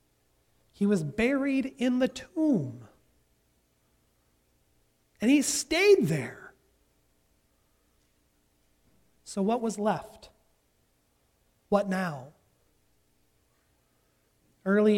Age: 40-59